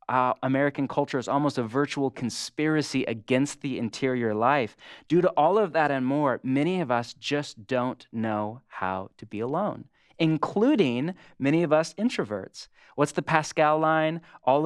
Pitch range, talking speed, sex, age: 120-145 Hz, 160 wpm, male, 30-49